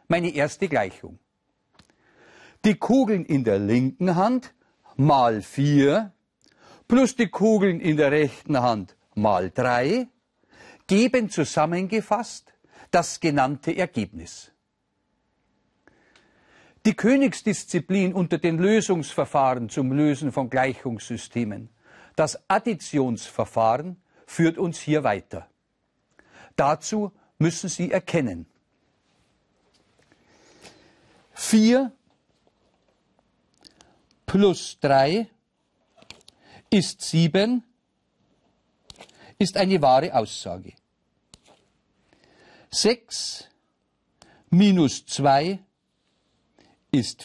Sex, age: male, 50-69